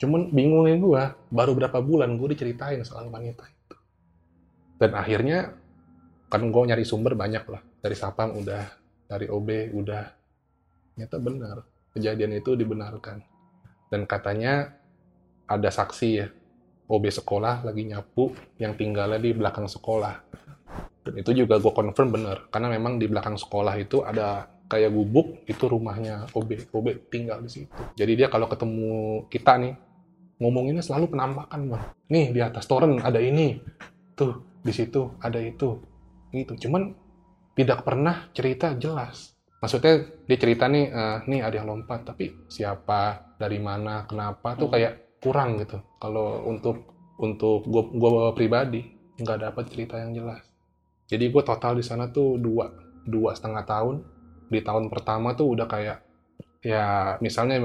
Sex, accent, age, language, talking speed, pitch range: male, native, 20-39, Indonesian, 145 wpm, 105-130 Hz